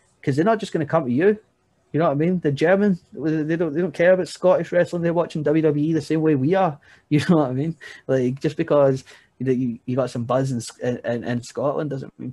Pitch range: 120-135 Hz